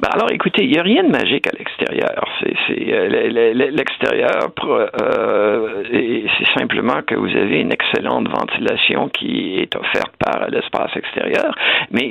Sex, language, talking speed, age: male, French, 155 wpm, 60-79